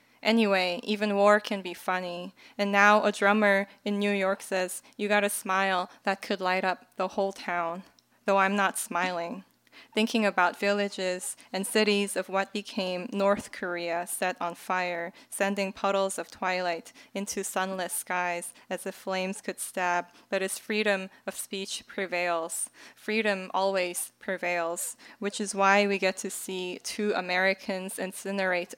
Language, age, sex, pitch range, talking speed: English, 10-29, female, 180-210 Hz, 150 wpm